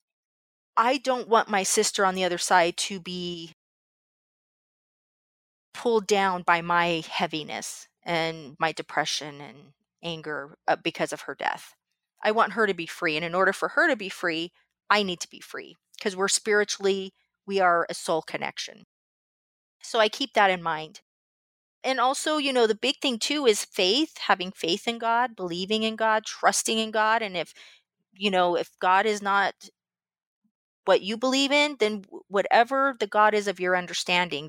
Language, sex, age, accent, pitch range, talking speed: English, female, 30-49, American, 175-220 Hz, 170 wpm